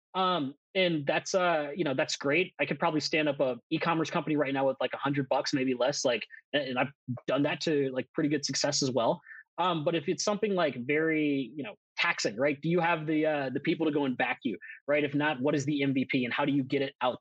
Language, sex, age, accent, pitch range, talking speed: English, male, 20-39, American, 150-205 Hz, 260 wpm